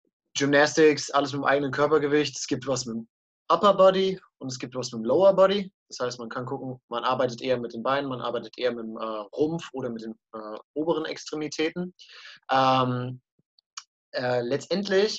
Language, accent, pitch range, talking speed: German, German, 125-160 Hz, 175 wpm